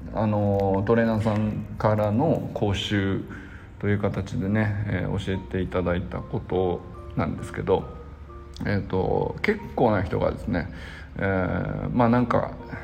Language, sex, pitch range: Japanese, male, 90-115 Hz